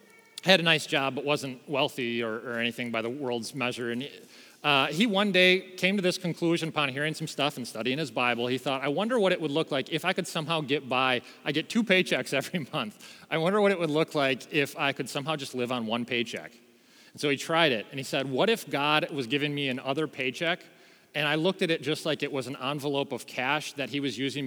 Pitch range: 140-195 Hz